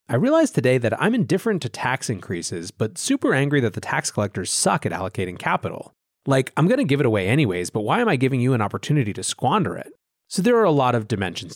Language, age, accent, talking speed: English, 30-49, American, 240 wpm